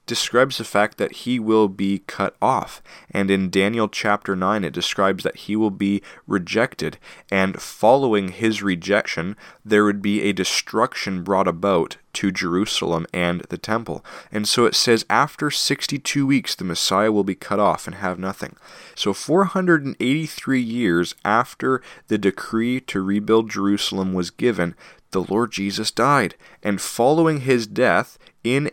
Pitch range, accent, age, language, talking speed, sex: 90-115 Hz, American, 30-49, English, 155 wpm, male